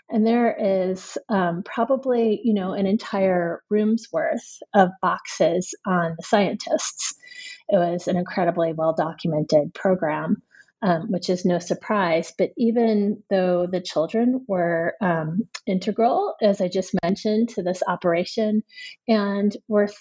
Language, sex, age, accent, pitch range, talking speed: English, female, 30-49, American, 175-220 Hz, 130 wpm